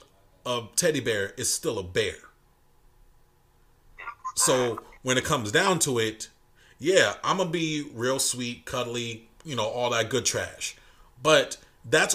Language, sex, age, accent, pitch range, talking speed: English, male, 30-49, American, 115-165 Hz, 150 wpm